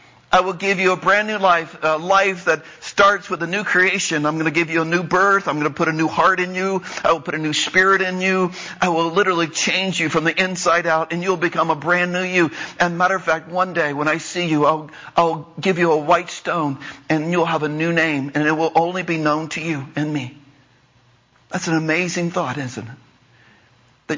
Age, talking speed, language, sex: 50-69, 240 wpm, English, male